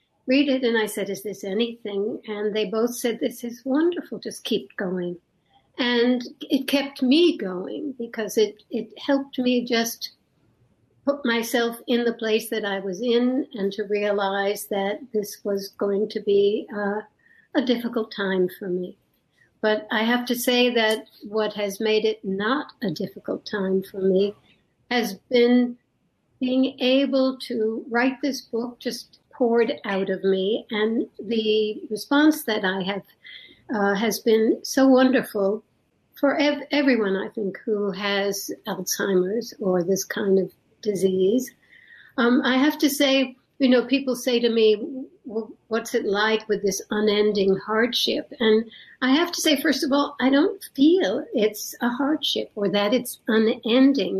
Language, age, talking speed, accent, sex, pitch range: English, 60-79, 155 wpm, American, female, 205-255 Hz